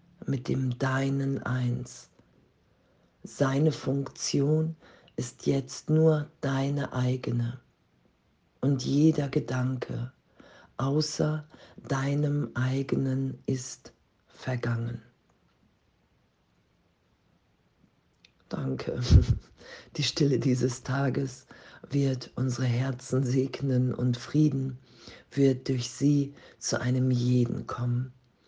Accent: German